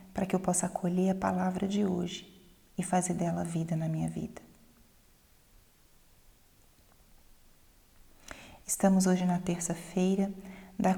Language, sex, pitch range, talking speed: Portuguese, female, 185-210 Hz, 115 wpm